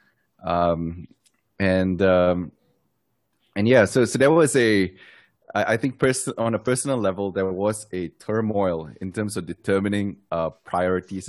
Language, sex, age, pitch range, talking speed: English, male, 20-39, 90-110 Hz, 145 wpm